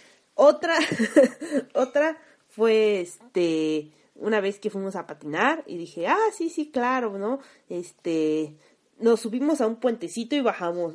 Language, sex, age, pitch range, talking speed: Spanish, female, 30-49, 185-280 Hz, 135 wpm